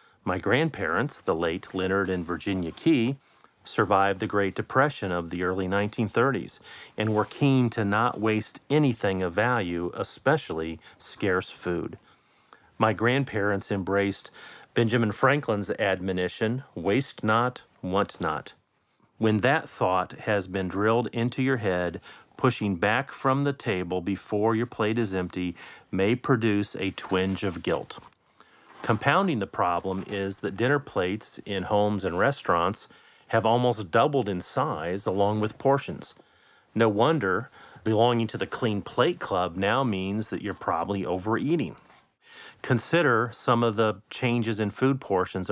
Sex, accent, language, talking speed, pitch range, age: male, American, English, 135 wpm, 95-120 Hz, 40-59